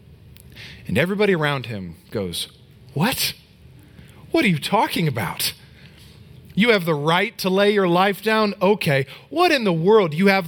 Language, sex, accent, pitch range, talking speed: English, male, American, 135-200 Hz, 155 wpm